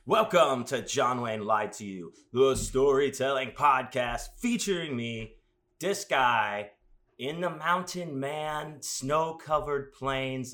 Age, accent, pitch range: 30-49, American, 110-145 Hz